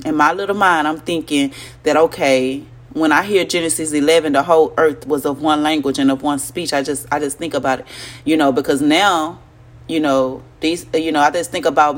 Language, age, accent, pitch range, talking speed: English, 30-49, American, 140-175 Hz, 220 wpm